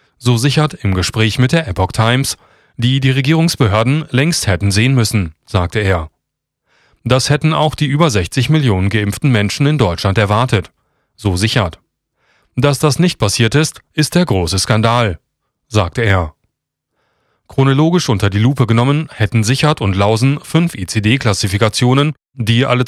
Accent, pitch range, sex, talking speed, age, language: German, 105-145 Hz, male, 145 wpm, 30-49, German